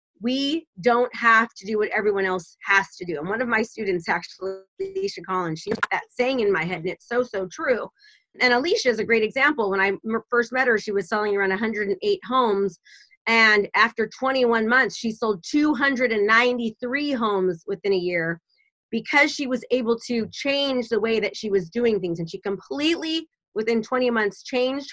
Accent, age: American, 30-49